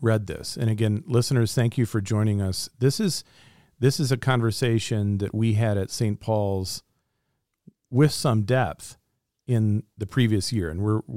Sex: male